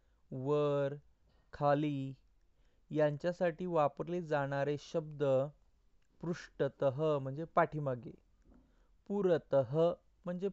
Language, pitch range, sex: Marathi, 130-170 Hz, male